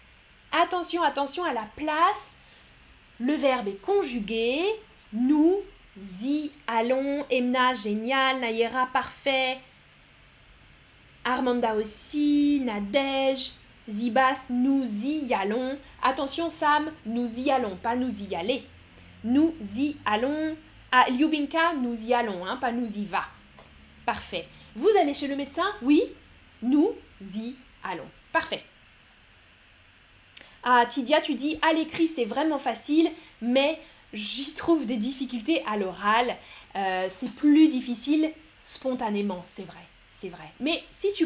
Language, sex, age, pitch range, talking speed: French, female, 10-29, 235-315 Hz, 120 wpm